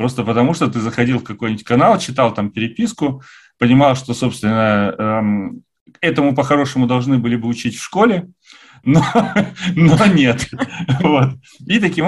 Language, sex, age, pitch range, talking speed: Russian, male, 30-49, 110-140 Hz, 140 wpm